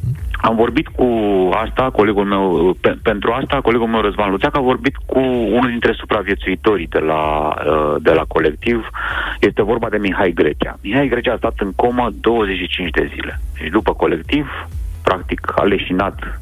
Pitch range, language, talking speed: 75-115 Hz, Romanian, 160 wpm